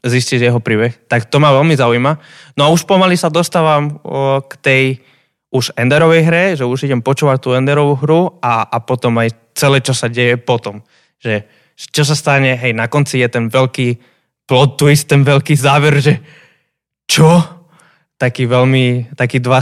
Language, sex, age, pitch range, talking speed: Slovak, male, 20-39, 120-150 Hz, 170 wpm